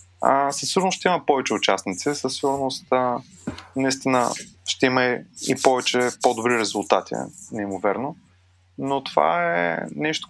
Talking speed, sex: 135 wpm, male